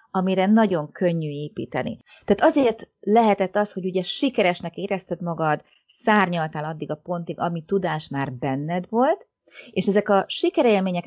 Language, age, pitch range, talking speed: Hungarian, 30-49, 155-205 Hz, 140 wpm